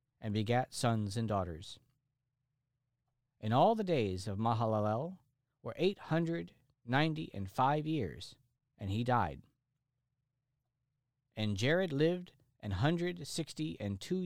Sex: male